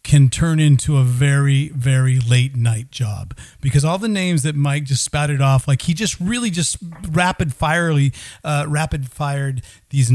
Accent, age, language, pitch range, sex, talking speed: American, 40-59, English, 130-160 Hz, male, 175 wpm